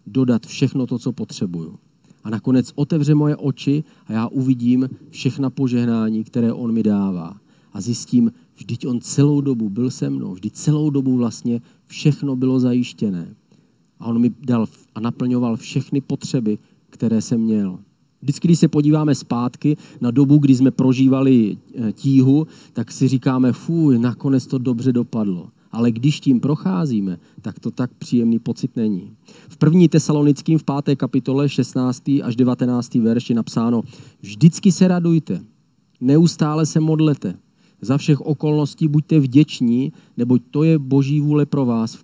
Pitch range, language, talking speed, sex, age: 120-150 Hz, Czech, 150 wpm, male, 40-59